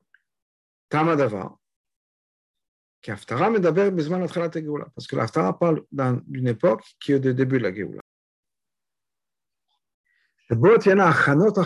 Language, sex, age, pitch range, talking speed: French, male, 50-69, 120-170 Hz, 65 wpm